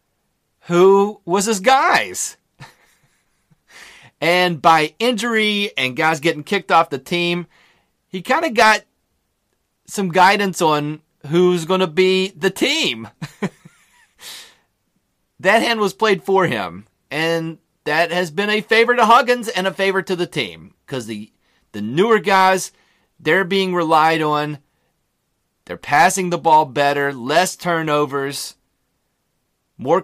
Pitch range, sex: 135-185 Hz, male